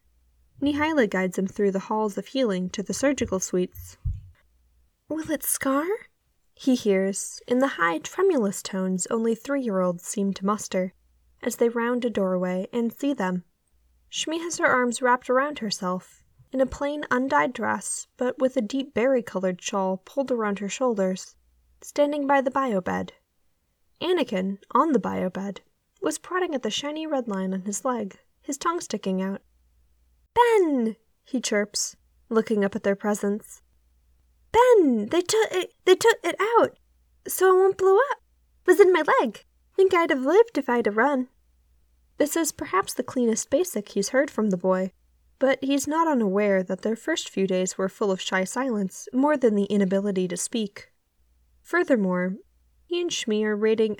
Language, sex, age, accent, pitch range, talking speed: English, female, 10-29, American, 190-280 Hz, 170 wpm